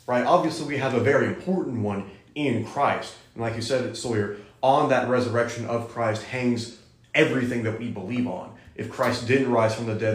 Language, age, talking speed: English, 30-49, 195 wpm